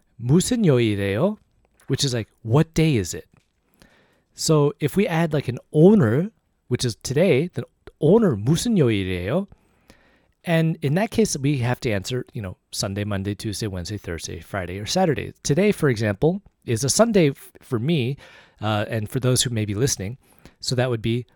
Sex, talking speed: male, 165 wpm